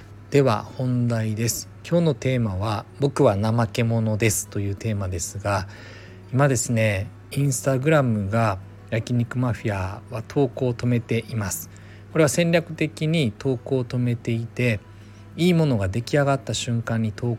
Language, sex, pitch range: Japanese, male, 100-125 Hz